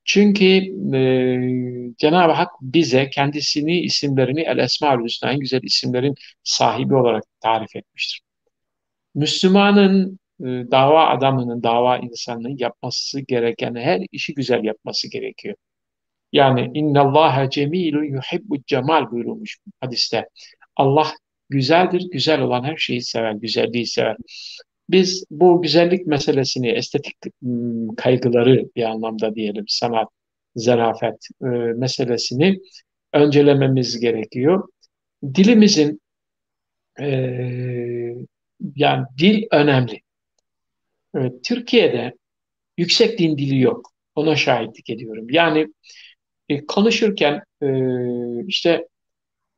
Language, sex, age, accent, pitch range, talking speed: Turkish, male, 60-79, native, 125-170 Hz, 95 wpm